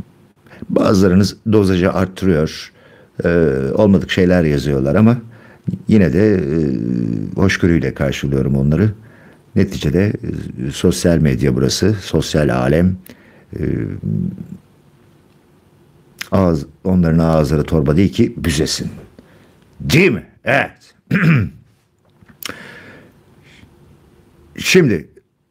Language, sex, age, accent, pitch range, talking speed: Turkish, male, 60-79, native, 90-125 Hz, 80 wpm